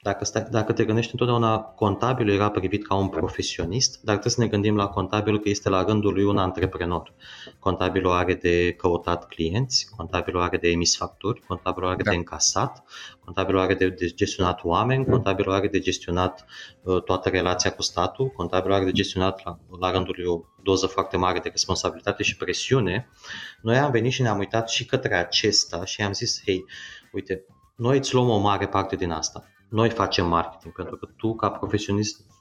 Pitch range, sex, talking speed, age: 95-110 Hz, male, 180 wpm, 20-39